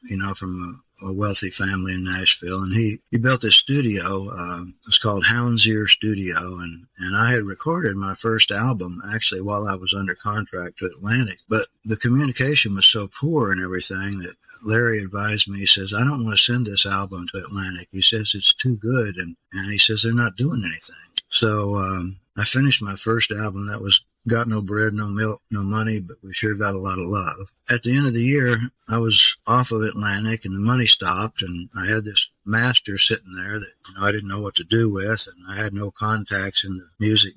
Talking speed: 220 wpm